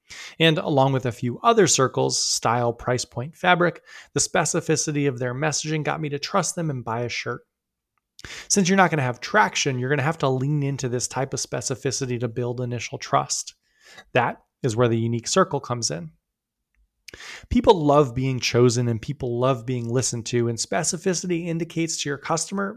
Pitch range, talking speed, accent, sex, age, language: 125-155 Hz, 185 wpm, American, male, 20-39, English